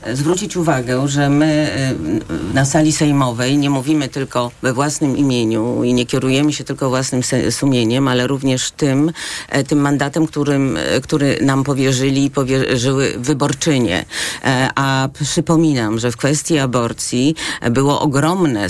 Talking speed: 125 wpm